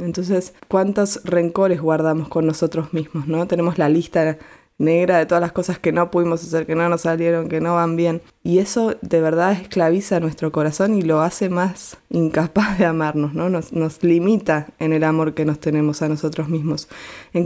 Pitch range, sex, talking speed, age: 160-185 Hz, female, 195 wpm, 20-39